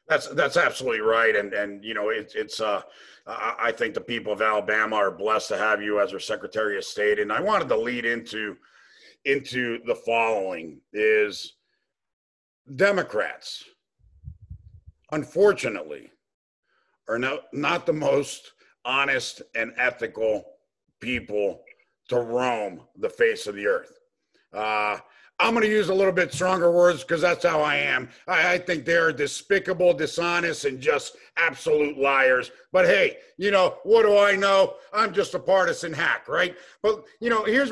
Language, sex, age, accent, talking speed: English, male, 50-69, American, 155 wpm